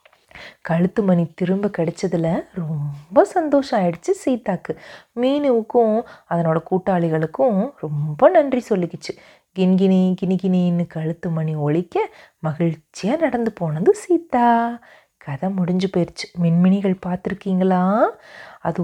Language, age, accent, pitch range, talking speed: Tamil, 30-49, native, 170-210 Hz, 90 wpm